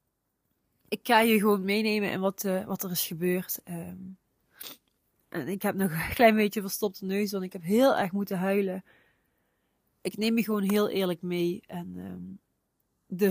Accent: Dutch